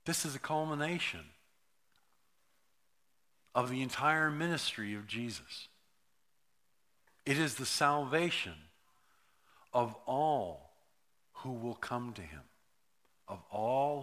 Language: English